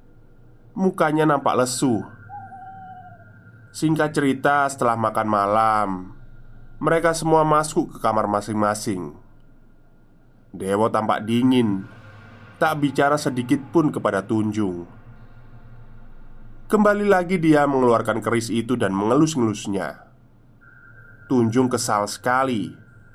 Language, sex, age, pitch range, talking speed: Indonesian, male, 20-39, 110-140 Hz, 90 wpm